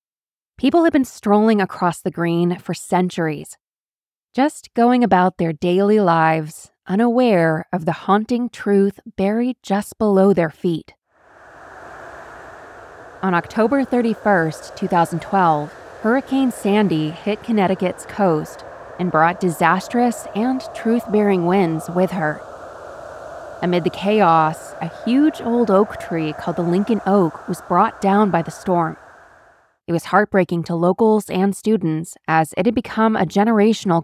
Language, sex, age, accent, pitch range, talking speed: English, female, 20-39, American, 170-220 Hz, 130 wpm